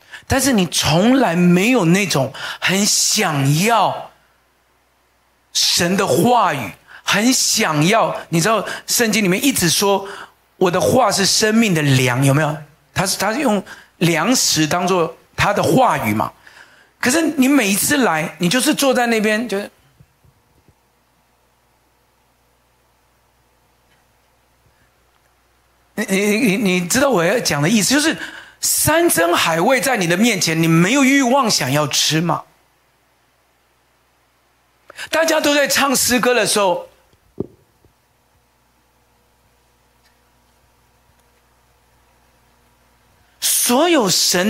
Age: 50-69